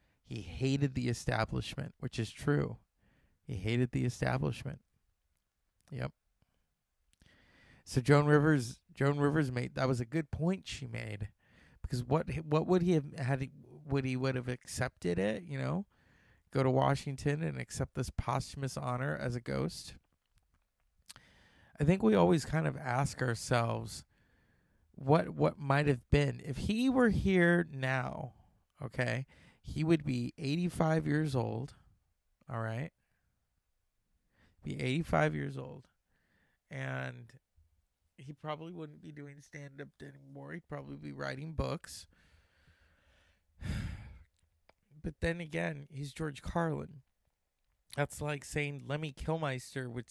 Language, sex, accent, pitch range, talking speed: English, male, American, 110-150 Hz, 130 wpm